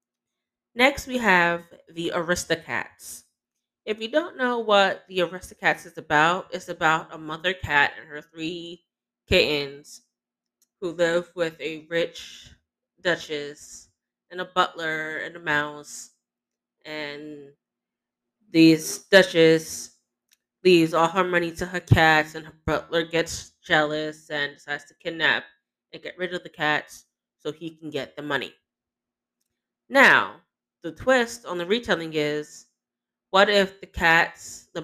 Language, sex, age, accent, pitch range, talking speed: English, female, 20-39, American, 150-175 Hz, 135 wpm